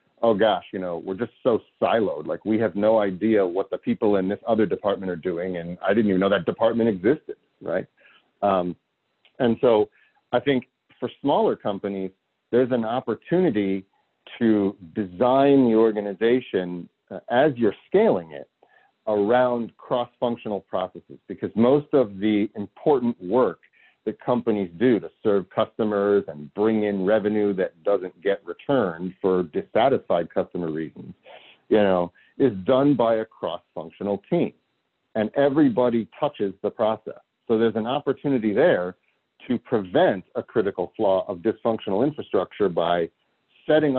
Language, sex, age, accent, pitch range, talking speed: English, male, 40-59, American, 95-120 Hz, 145 wpm